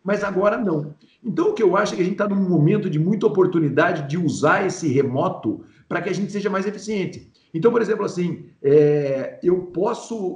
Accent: Brazilian